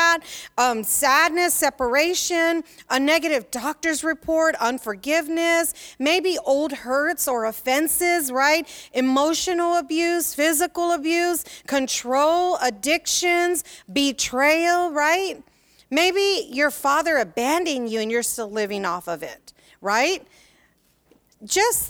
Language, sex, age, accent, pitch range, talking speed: English, female, 40-59, American, 270-335 Hz, 100 wpm